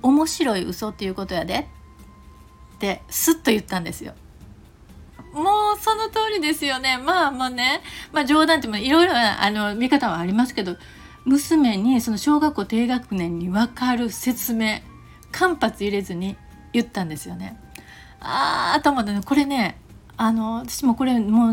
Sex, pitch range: female, 215-265 Hz